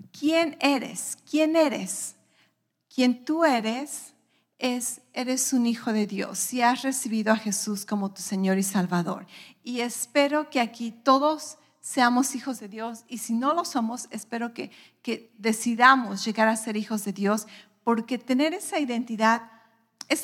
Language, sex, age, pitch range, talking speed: English, female, 40-59, 220-265 Hz, 155 wpm